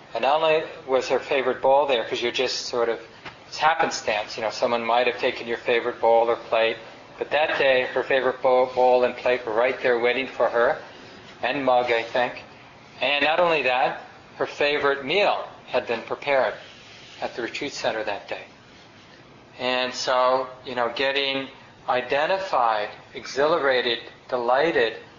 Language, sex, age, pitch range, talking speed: English, male, 40-59, 125-140 Hz, 165 wpm